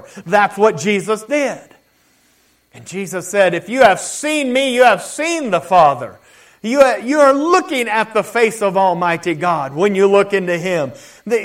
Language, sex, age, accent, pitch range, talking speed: English, male, 50-69, American, 185-265 Hz, 170 wpm